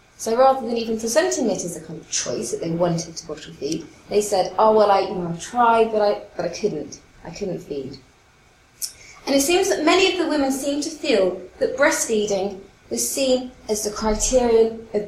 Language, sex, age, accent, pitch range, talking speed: English, female, 30-49, British, 195-280 Hz, 210 wpm